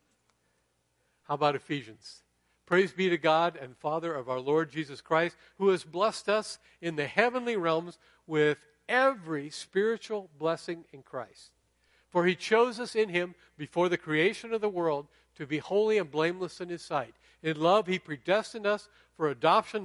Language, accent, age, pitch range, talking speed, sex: English, American, 50-69, 135-195 Hz, 165 wpm, male